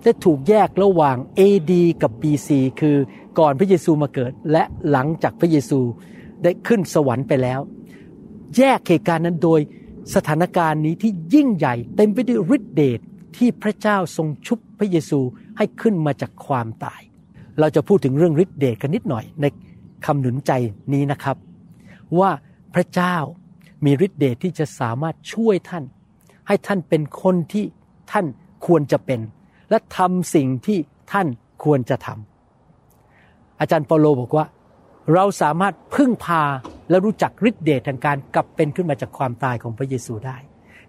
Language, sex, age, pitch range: Thai, male, 60-79, 135-185 Hz